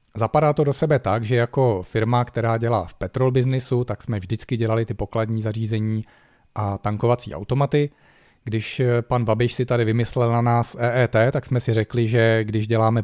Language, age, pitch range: Czech, 40-59, 110-125 Hz